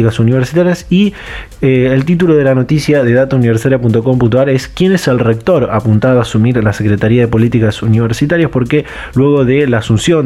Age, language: 20-39, Spanish